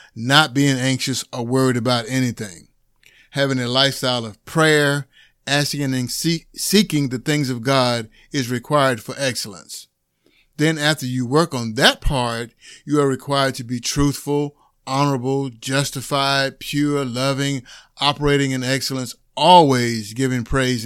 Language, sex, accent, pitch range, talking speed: English, male, American, 125-145 Hz, 130 wpm